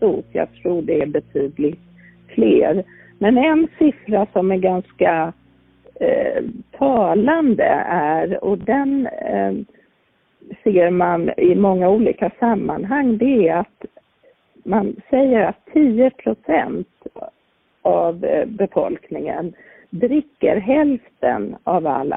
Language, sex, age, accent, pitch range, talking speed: Swedish, female, 50-69, native, 175-265 Hz, 105 wpm